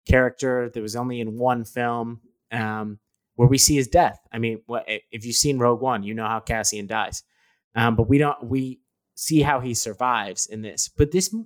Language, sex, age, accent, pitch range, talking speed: English, male, 30-49, American, 115-140 Hz, 200 wpm